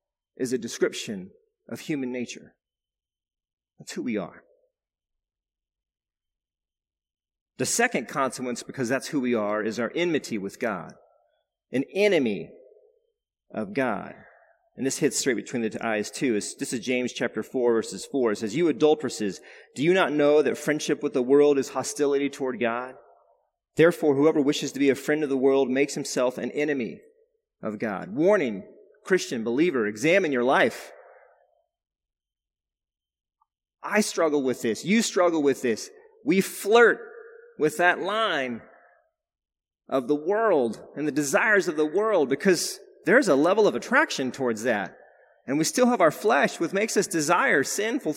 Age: 40-59